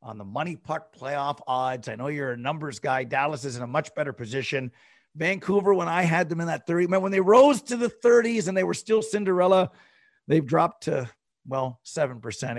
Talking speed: 205 wpm